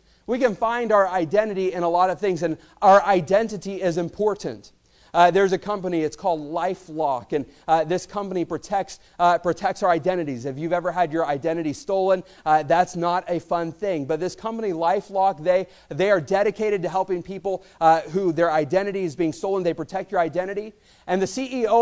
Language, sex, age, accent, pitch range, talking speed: English, male, 30-49, American, 175-210 Hz, 190 wpm